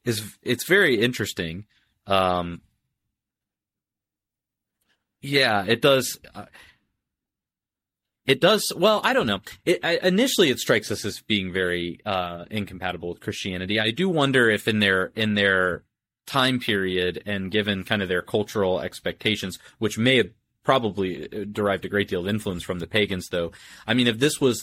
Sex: male